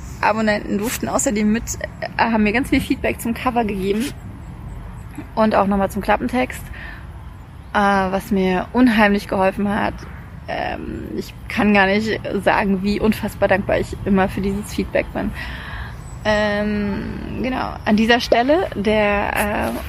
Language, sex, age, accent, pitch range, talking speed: German, female, 30-49, German, 200-235 Hz, 140 wpm